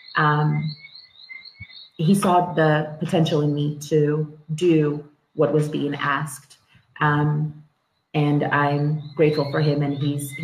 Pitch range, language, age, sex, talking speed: 145-155 Hz, English, 30-49, female, 120 wpm